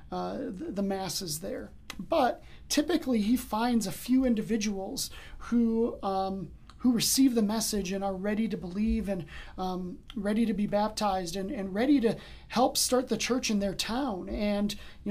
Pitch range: 195-230 Hz